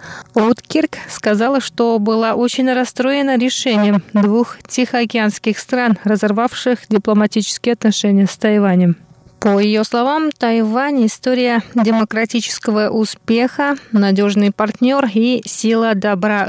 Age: 20-39